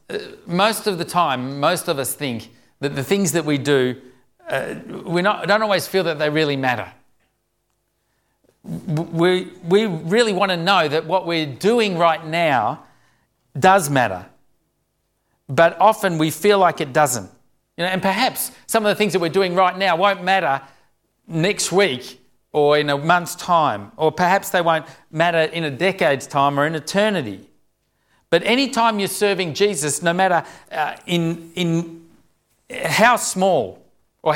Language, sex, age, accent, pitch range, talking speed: English, male, 50-69, Australian, 145-190 Hz, 160 wpm